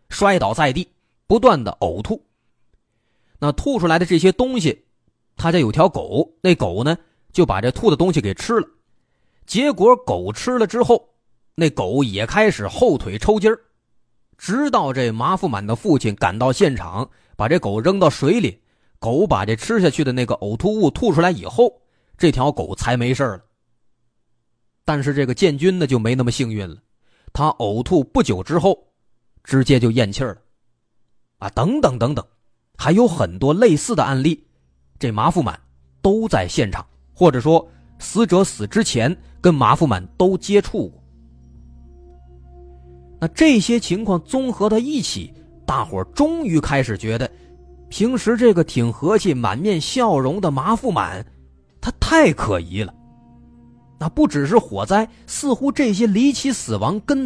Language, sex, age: Chinese, male, 30-49